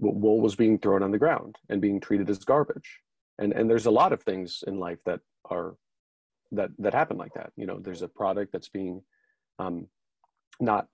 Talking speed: 205 wpm